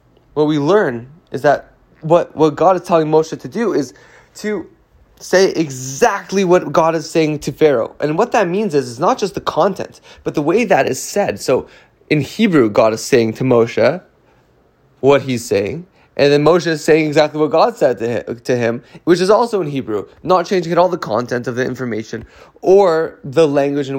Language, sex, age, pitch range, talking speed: English, male, 20-39, 130-175 Hz, 200 wpm